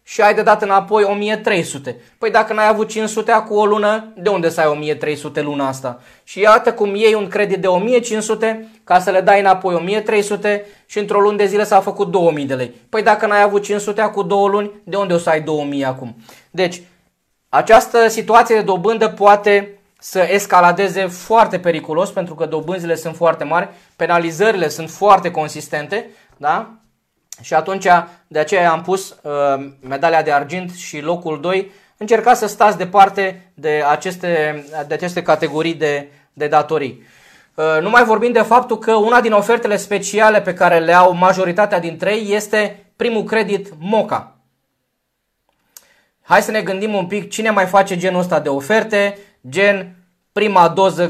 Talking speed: 170 wpm